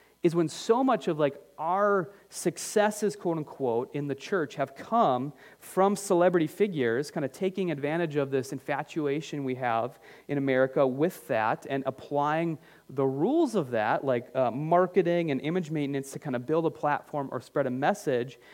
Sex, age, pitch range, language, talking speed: male, 30-49, 140-195 Hz, English, 170 wpm